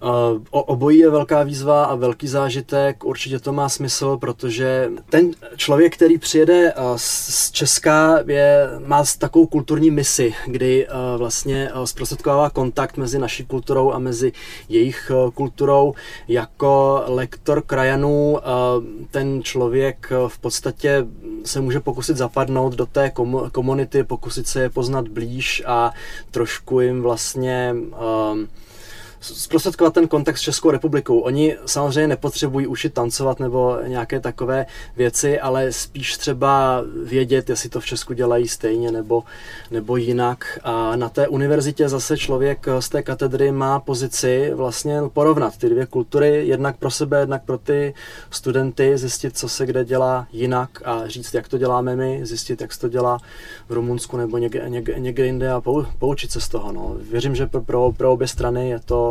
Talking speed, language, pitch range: 150 wpm, Czech, 125-145 Hz